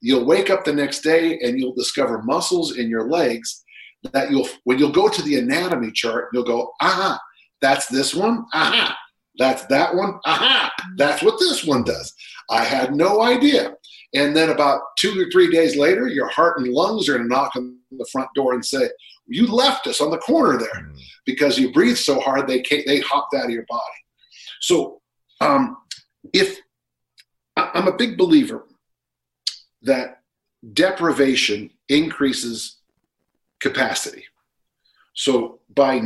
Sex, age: male, 50-69